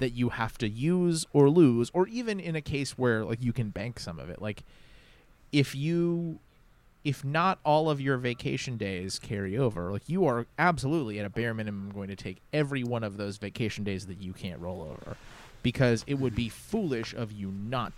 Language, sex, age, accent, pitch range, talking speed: English, male, 30-49, American, 105-140 Hz, 205 wpm